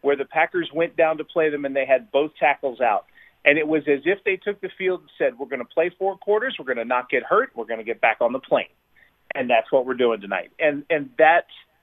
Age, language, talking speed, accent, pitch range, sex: 40-59, English, 275 wpm, American, 145-185 Hz, male